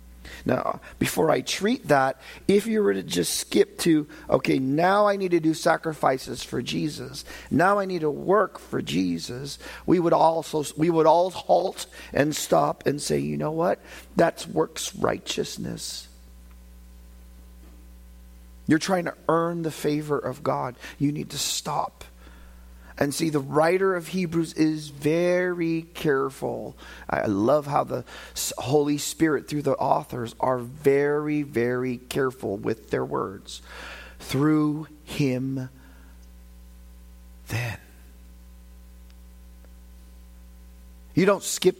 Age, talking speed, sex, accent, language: 40-59, 125 wpm, male, American, English